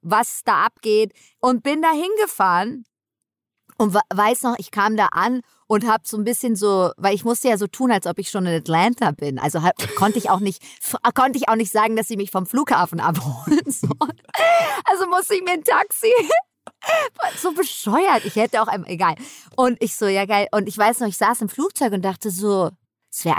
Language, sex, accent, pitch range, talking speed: German, female, German, 175-235 Hz, 210 wpm